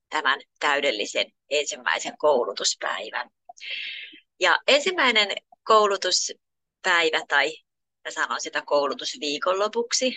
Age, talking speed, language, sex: 30-49, 70 wpm, Finnish, female